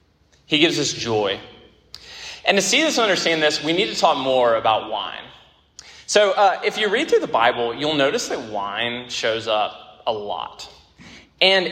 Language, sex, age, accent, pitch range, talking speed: English, male, 20-39, American, 110-155 Hz, 180 wpm